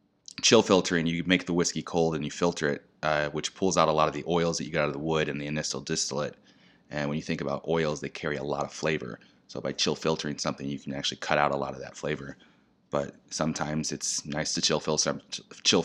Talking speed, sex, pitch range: 245 wpm, male, 70-80 Hz